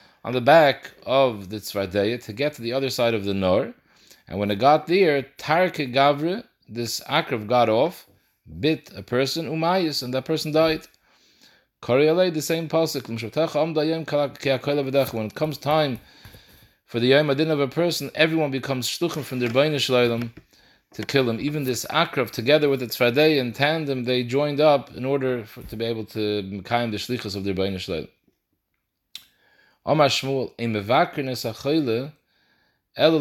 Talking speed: 160 wpm